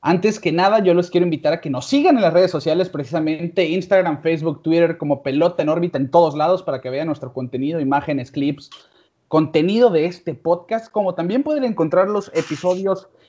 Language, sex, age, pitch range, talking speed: Spanish, male, 30-49, 150-195 Hz, 195 wpm